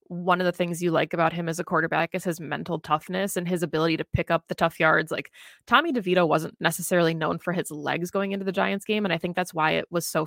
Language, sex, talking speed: English, female, 270 wpm